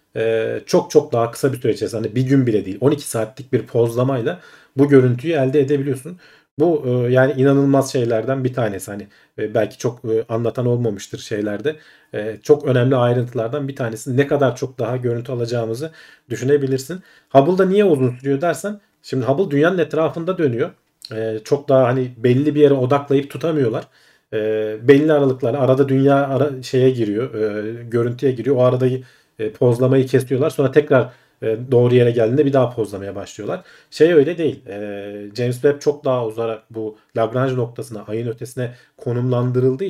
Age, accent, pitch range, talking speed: 40-59, native, 115-140 Hz, 160 wpm